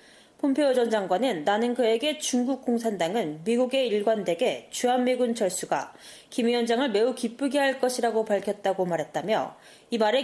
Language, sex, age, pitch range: Korean, female, 20-39, 210-275 Hz